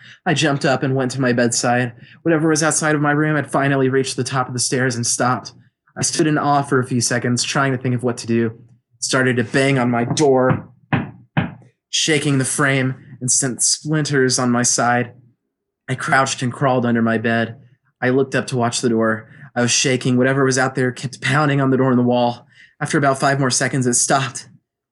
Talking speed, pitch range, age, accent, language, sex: 220 wpm, 115-130 Hz, 20-39, American, English, male